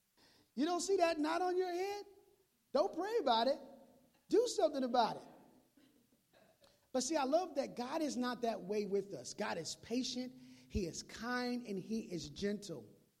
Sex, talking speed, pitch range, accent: male, 175 wpm, 210-275 Hz, American